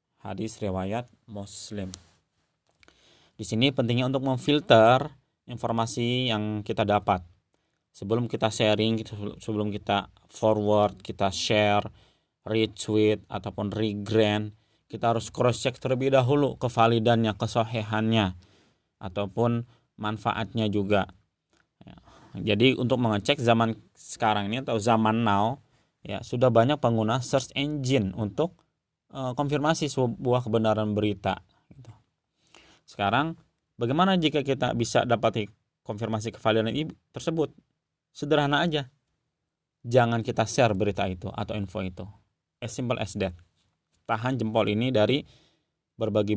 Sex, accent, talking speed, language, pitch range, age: male, native, 105 wpm, Indonesian, 105-125 Hz, 20-39